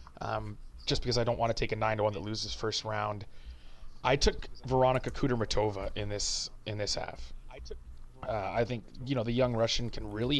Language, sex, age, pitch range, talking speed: English, male, 20-39, 105-125 Hz, 200 wpm